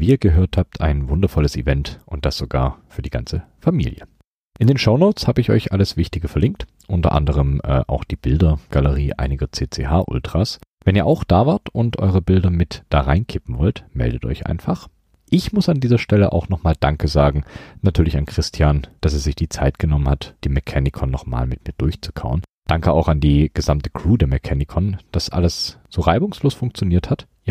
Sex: male